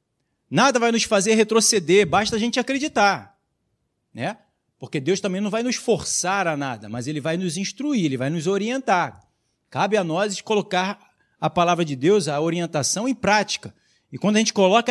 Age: 40-59